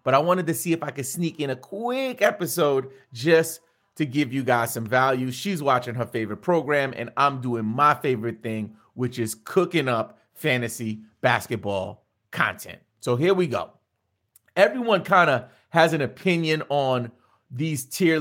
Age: 30-49